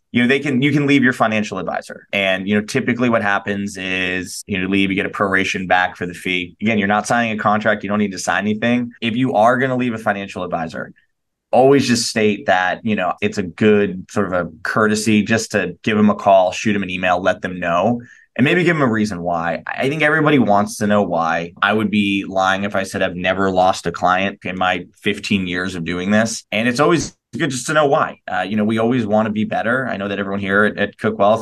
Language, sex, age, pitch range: English, male, 20-39, 95-110 Hz